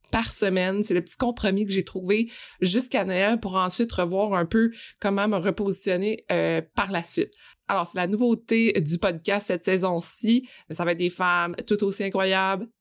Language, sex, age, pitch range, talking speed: French, female, 20-39, 190-230 Hz, 185 wpm